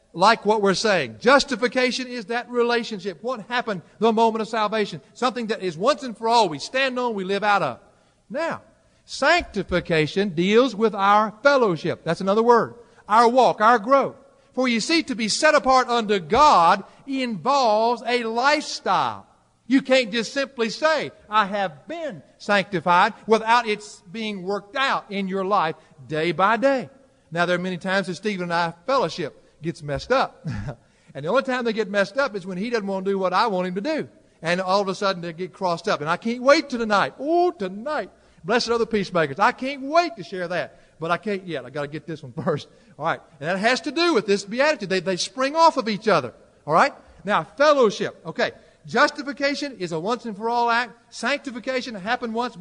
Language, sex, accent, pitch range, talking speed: English, male, American, 185-255 Hz, 200 wpm